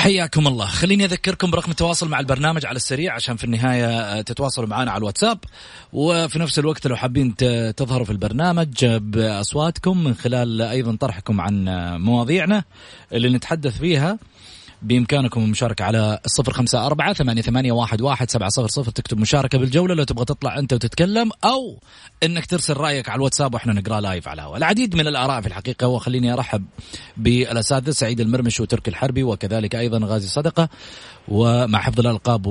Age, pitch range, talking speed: 30-49, 120-165 Hz, 145 wpm